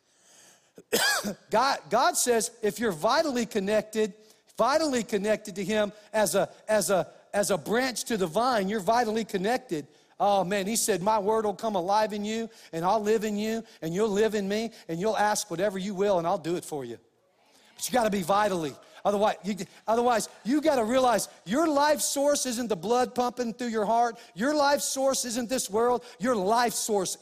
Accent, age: American, 50-69